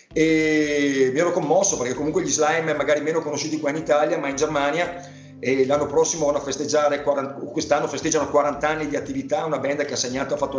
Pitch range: 130-150 Hz